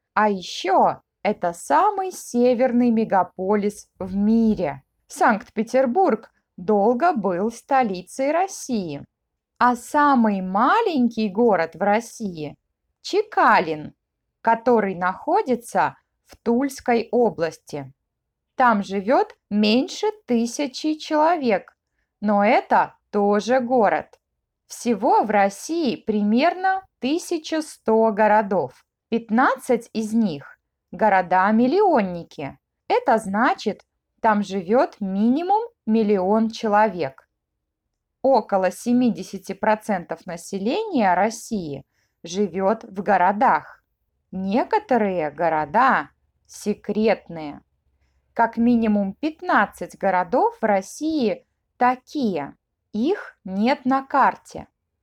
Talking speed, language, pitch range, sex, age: 80 wpm, Russian, 195-260 Hz, female, 20-39